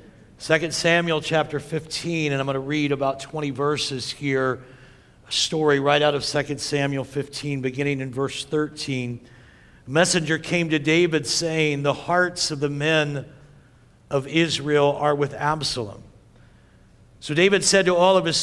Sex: male